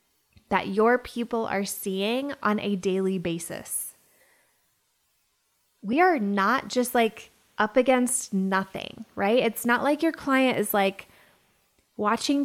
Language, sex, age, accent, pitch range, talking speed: English, female, 20-39, American, 210-275 Hz, 125 wpm